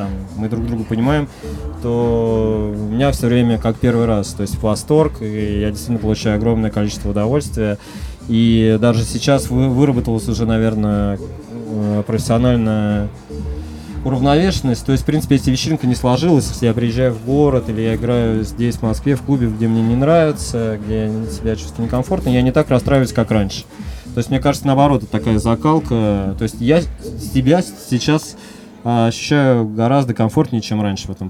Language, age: Russian, 20-39